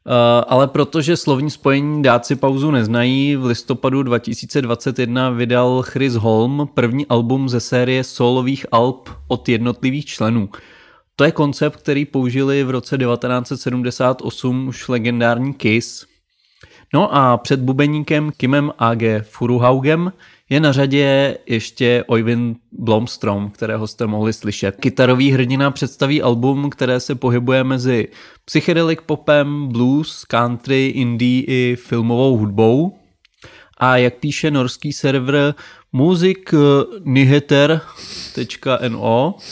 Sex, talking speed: male, 110 wpm